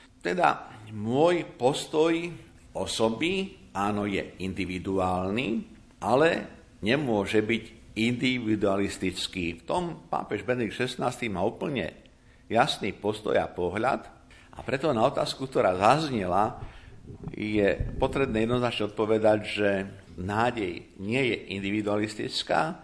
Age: 50-69